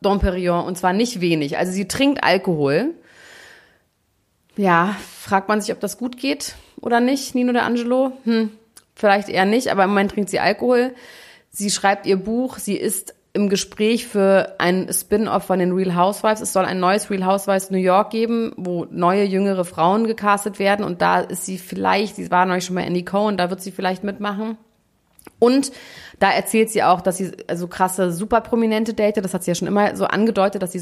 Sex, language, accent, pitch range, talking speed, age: female, German, German, 185-225 Hz, 195 wpm, 30-49